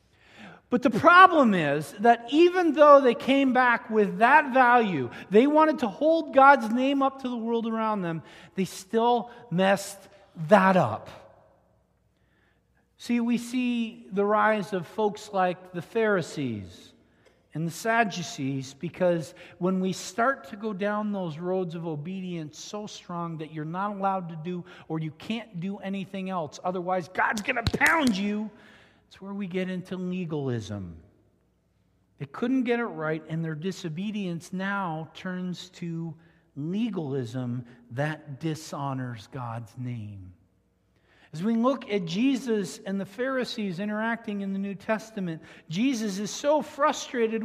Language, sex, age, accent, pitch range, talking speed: English, male, 40-59, American, 175-250 Hz, 145 wpm